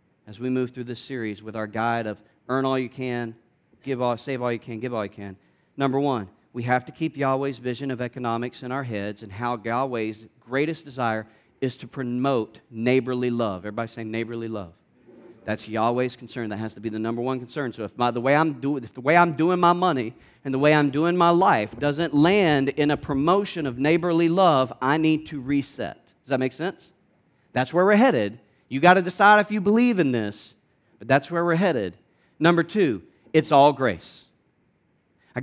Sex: male